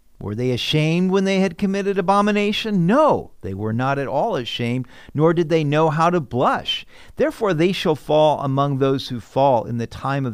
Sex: male